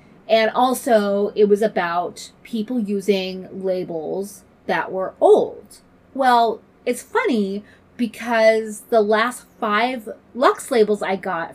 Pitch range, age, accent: 195-240 Hz, 30-49, American